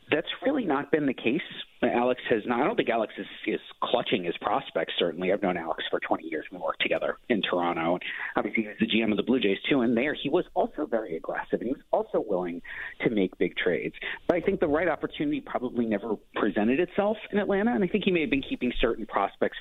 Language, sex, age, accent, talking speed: English, male, 40-59, American, 240 wpm